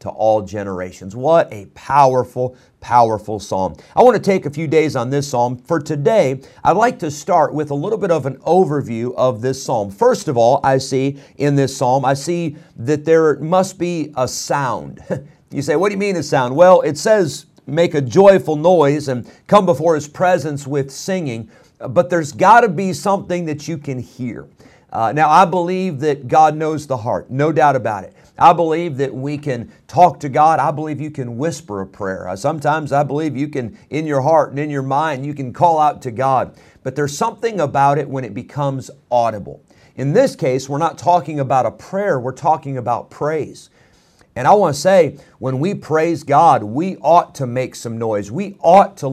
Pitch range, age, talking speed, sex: 130-170 Hz, 50-69, 205 wpm, male